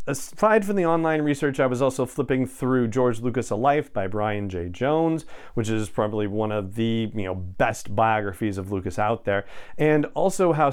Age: 40-59